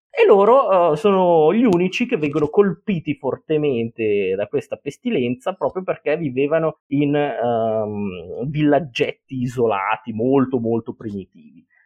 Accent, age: native, 30-49